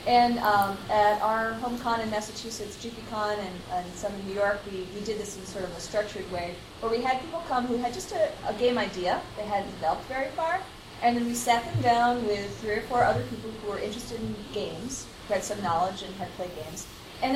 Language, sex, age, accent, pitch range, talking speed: English, female, 30-49, American, 200-245 Hz, 235 wpm